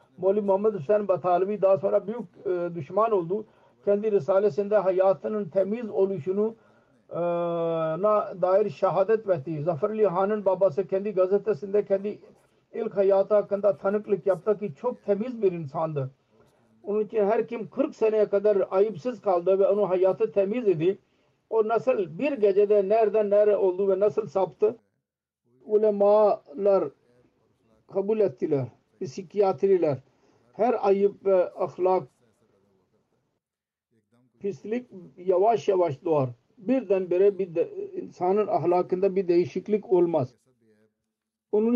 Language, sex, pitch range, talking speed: Turkish, male, 155-210 Hz, 115 wpm